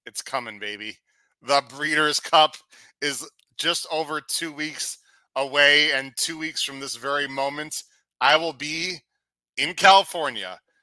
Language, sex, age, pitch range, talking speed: English, male, 30-49, 125-145 Hz, 135 wpm